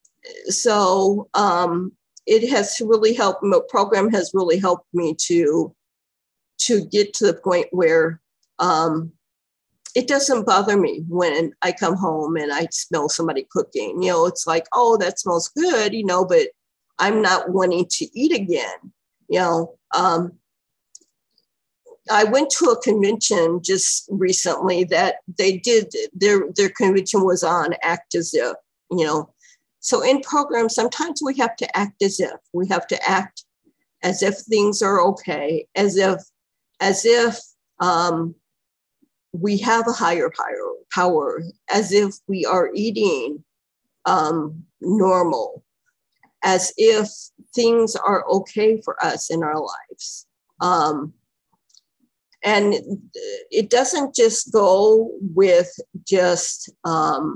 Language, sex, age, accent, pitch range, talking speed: English, female, 50-69, American, 180-235 Hz, 135 wpm